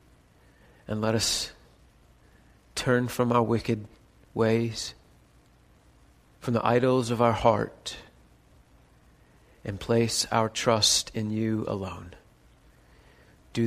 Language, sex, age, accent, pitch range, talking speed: English, male, 40-59, American, 115-155 Hz, 95 wpm